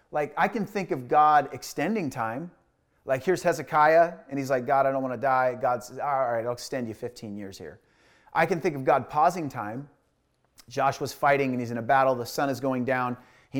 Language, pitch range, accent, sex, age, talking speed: English, 110-135 Hz, American, male, 30-49, 220 wpm